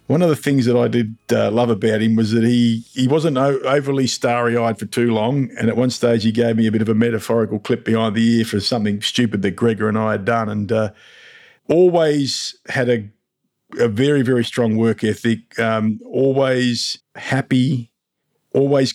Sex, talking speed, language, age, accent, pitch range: male, 195 wpm, English, 50-69, Australian, 110-135 Hz